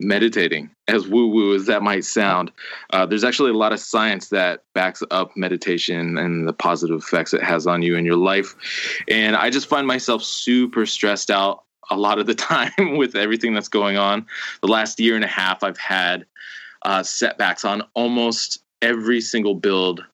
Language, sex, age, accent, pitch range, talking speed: English, male, 20-39, American, 90-105 Hz, 185 wpm